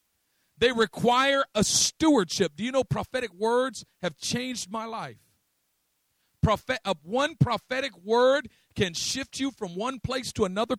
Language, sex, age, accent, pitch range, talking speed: English, male, 50-69, American, 145-225 Hz, 150 wpm